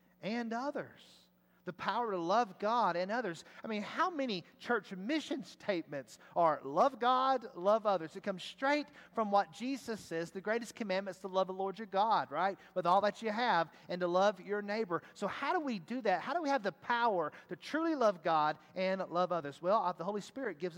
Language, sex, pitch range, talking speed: English, male, 160-225 Hz, 210 wpm